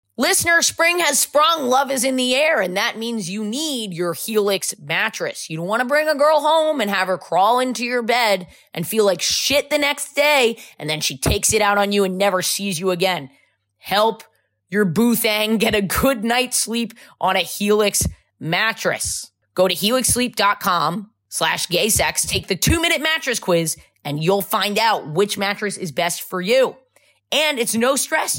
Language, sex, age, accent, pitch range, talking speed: English, female, 20-39, American, 185-245 Hz, 185 wpm